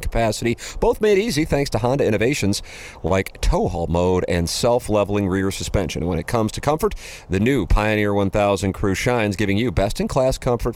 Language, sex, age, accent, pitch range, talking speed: English, male, 40-59, American, 100-150 Hz, 175 wpm